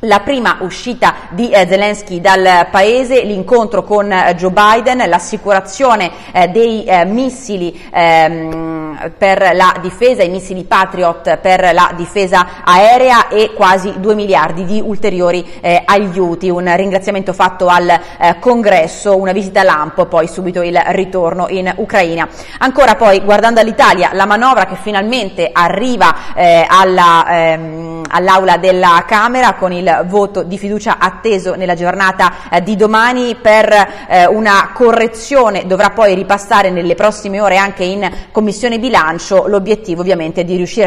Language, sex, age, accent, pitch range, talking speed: Italian, female, 30-49, native, 180-215 Hz, 125 wpm